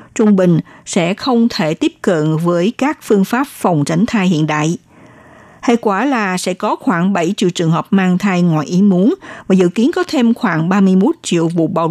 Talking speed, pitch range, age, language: 205 wpm, 175-240 Hz, 60-79, Vietnamese